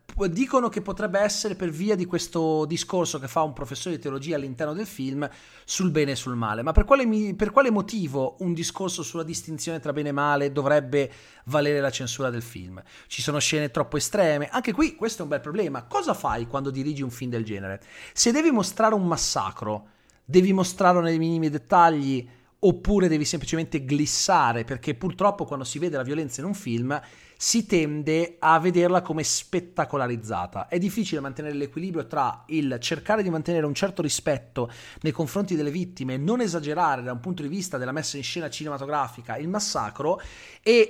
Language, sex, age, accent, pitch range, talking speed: Italian, male, 30-49, native, 130-175 Hz, 180 wpm